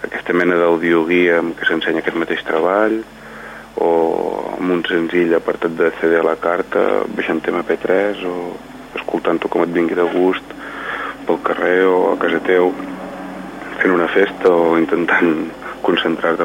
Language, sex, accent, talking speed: English, male, Spanish, 145 wpm